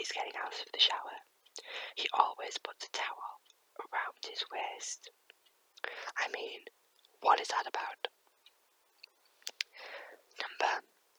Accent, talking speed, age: British, 105 wpm, 20-39